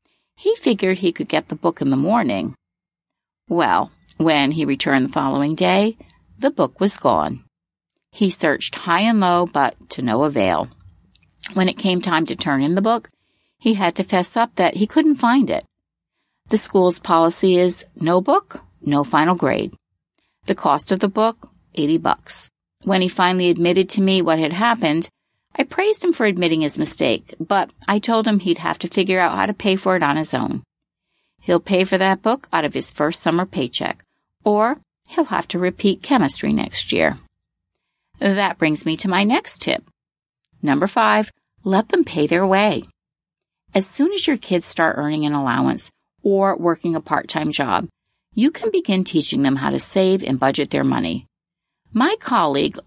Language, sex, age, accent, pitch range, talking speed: English, female, 60-79, American, 160-220 Hz, 180 wpm